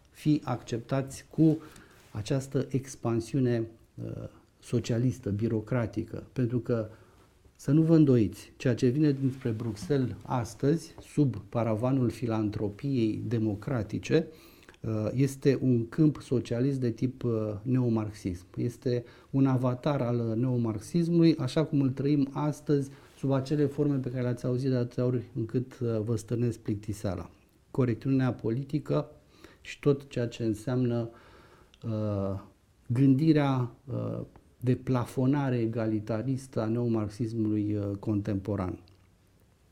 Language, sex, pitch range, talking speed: Romanian, male, 110-140 Hz, 110 wpm